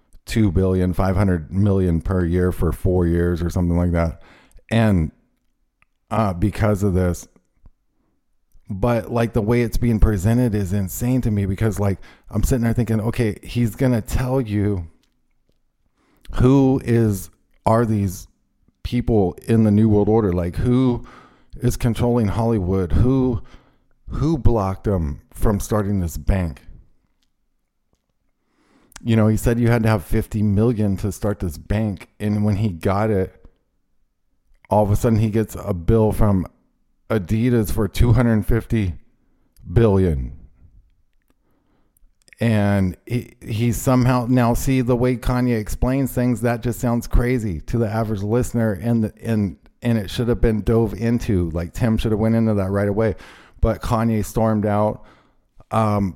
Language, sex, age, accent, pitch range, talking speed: English, male, 40-59, American, 95-120 Hz, 150 wpm